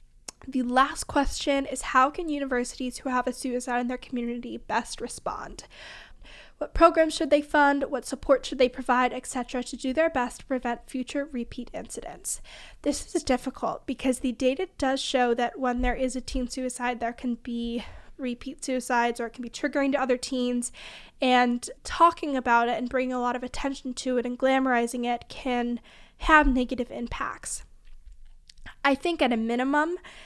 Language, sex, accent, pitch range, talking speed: English, female, American, 245-275 Hz, 175 wpm